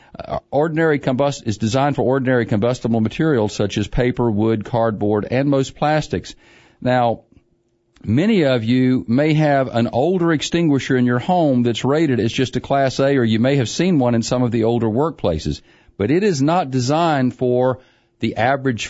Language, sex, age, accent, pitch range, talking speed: English, male, 50-69, American, 110-145 Hz, 180 wpm